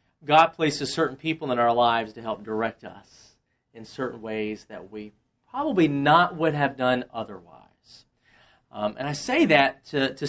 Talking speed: 170 wpm